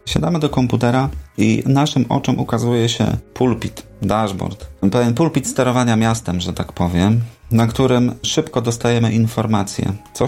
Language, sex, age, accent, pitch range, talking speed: Polish, male, 30-49, native, 105-130 Hz, 135 wpm